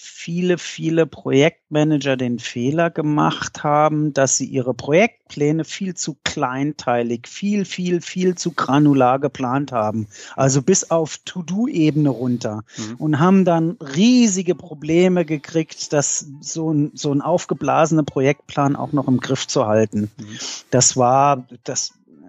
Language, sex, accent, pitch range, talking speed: German, male, German, 140-180 Hz, 130 wpm